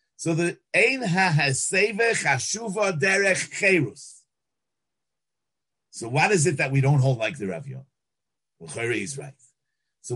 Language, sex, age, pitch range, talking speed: English, male, 50-69, 140-190 Hz, 125 wpm